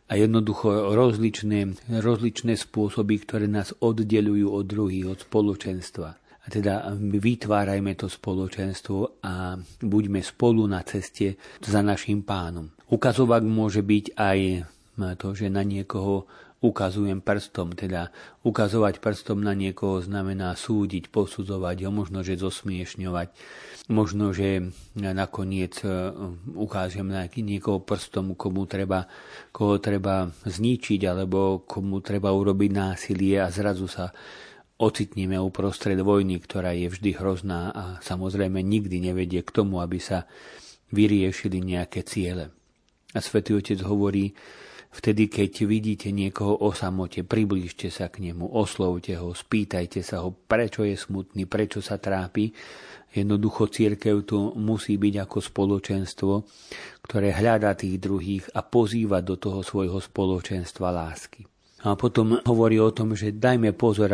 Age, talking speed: 40-59, 125 wpm